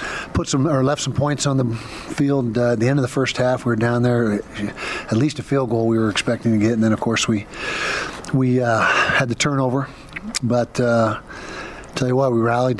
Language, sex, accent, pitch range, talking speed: English, male, American, 105-120 Hz, 225 wpm